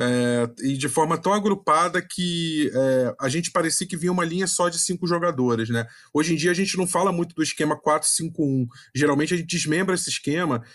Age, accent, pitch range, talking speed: 20-39, Brazilian, 150-190 Hz, 205 wpm